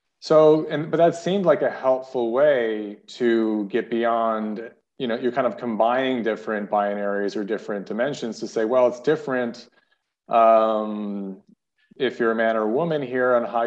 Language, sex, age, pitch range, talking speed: English, male, 30-49, 110-125 Hz, 170 wpm